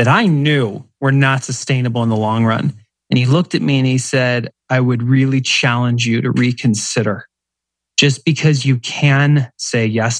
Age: 30-49